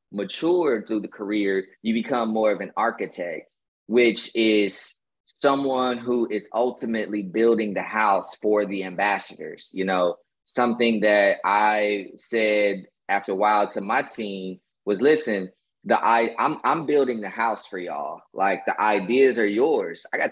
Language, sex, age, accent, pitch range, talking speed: English, male, 20-39, American, 100-120 Hz, 155 wpm